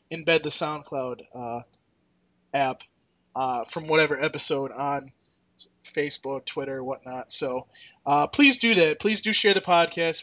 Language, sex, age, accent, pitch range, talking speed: English, male, 20-39, American, 145-185 Hz, 135 wpm